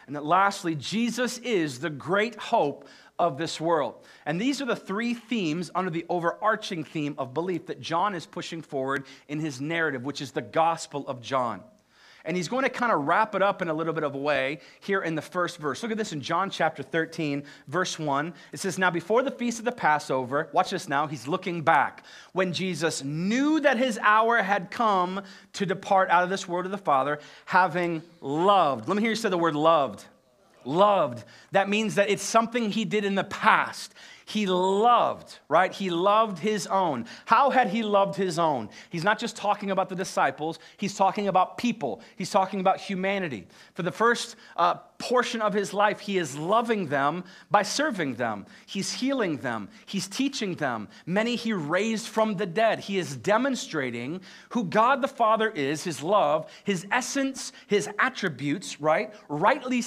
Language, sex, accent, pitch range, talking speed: English, male, American, 165-215 Hz, 190 wpm